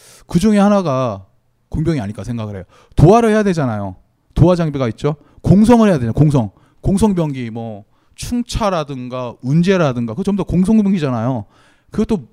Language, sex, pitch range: Korean, male, 120-205 Hz